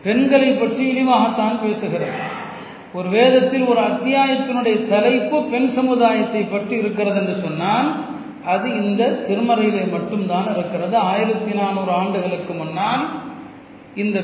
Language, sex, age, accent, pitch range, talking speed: Tamil, male, 40-59, native, 200-240 Hz, 95 wpm